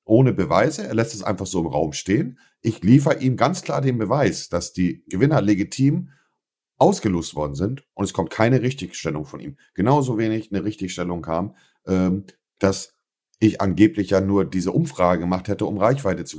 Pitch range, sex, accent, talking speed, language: 95-130 Hz, male, German, 175 wpm, German